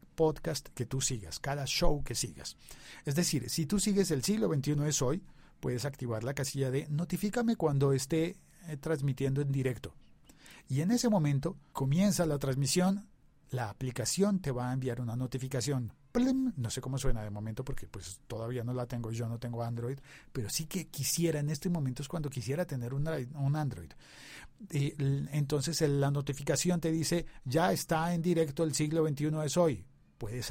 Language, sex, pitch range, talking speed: Spanish, male, 125-160 Hz, 180 wpm